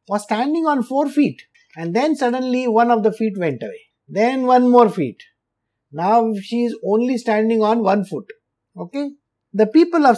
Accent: Indian